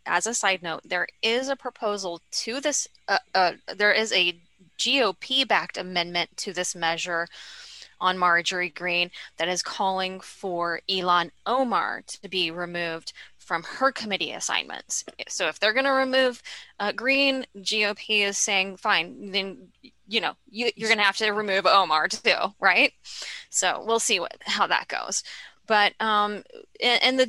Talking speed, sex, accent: 155 wpm, female, American